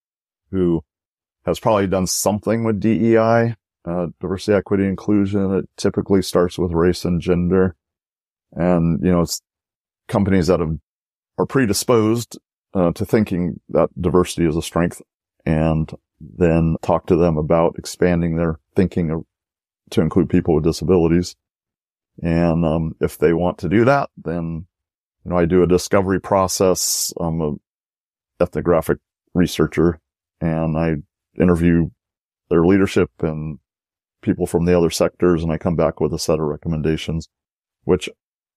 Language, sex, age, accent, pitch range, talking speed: English, male, 40-59, American, 80-95 Hz, 140 wpm